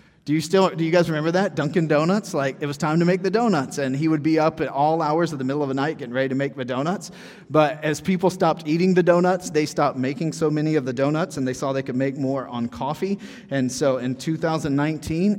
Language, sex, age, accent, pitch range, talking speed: English, male, 30-49, American, 130-170 Hz, 255 wpm